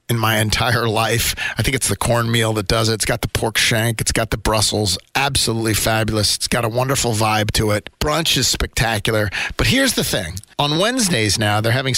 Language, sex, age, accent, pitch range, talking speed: English, male, 40-59, American, 120-180 Hz, 210 wpm